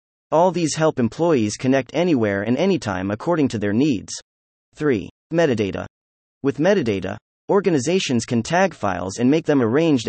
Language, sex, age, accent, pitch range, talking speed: English, male, 30-49, American, 105-155 Hz, 145 wpm